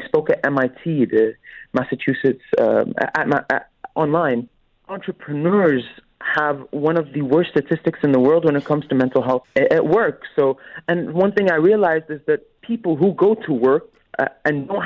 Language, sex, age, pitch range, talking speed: English, male, 30-49, 145-200 Hz, 180 wpm